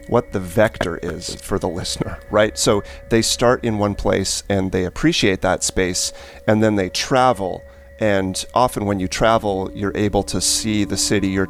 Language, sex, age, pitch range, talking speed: English, male, 30-49, 90-110 Hz, 185 wpm